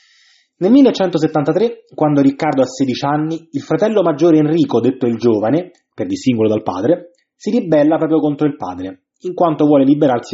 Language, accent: Italian, native